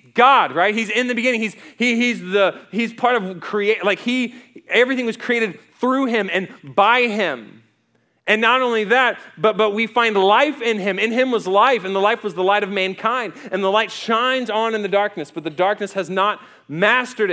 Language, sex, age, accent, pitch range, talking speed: English, male, 30-49, American, 180-240 Hz, 210 wpm